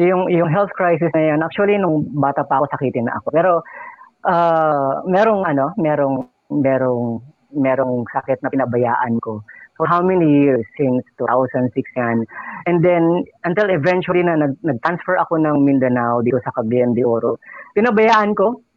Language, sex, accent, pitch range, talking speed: English, female, Filipino, 130-180 Hz, 155 wpm